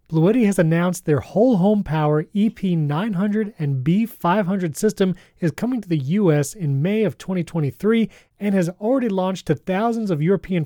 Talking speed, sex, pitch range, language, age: 160 wpm, male, 155-205 Hz, English, 30-49